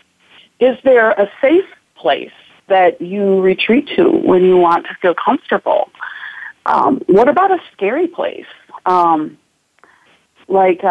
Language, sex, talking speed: English, female, 125 wpm